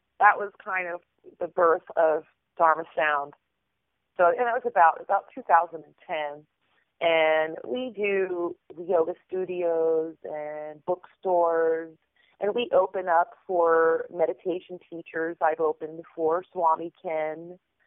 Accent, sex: American, female